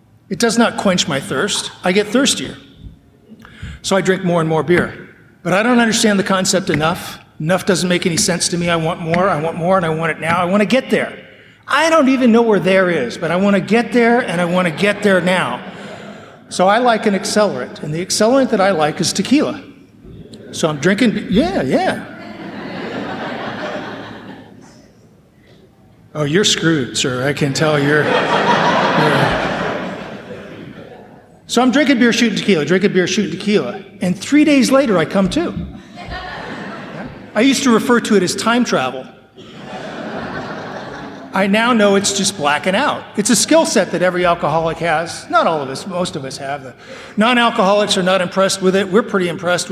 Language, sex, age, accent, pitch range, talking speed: English, male, 50-69, American, 175-225 Hz, 185 wpm